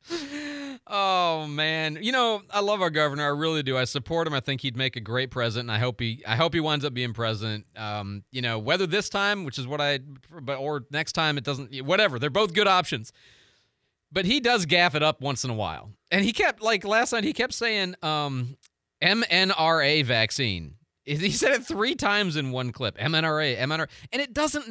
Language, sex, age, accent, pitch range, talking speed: English, male, 30-49, American, 130-185 Hz, 210 wpm